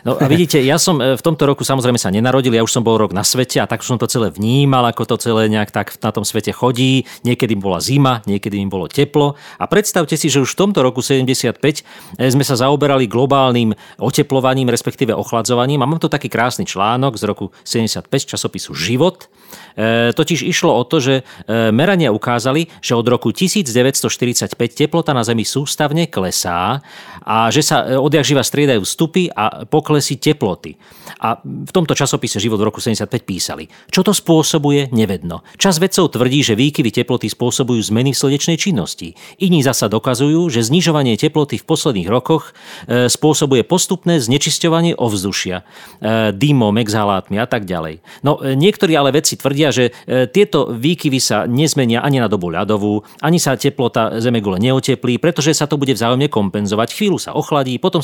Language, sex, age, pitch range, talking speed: Slovak, male, 40-59, 115-150 Hz, 170 wpm